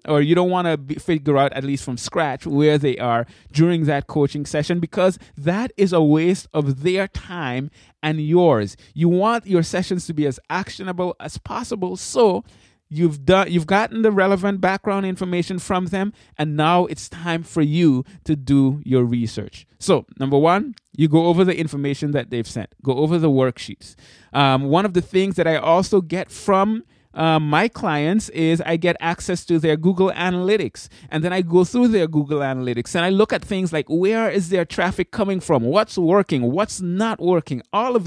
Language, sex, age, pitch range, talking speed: English, male, 20-39, 140-185 Hz, 190 wpm